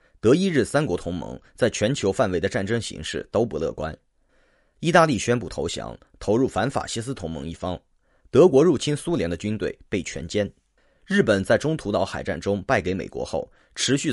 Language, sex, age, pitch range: Chinese, male, 30-49, 95-135 Hz